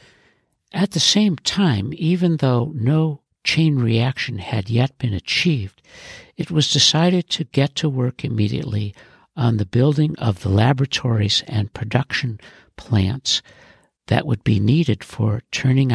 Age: 60-79